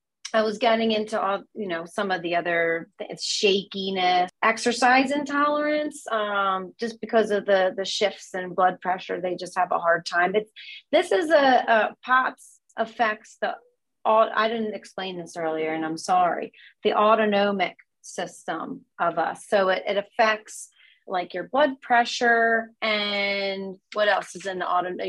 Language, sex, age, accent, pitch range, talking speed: English, female, 30-49, American, 185-230 Hz, 160 wpm